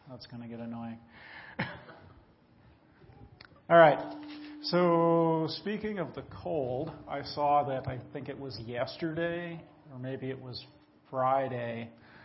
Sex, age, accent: male, 40-59, American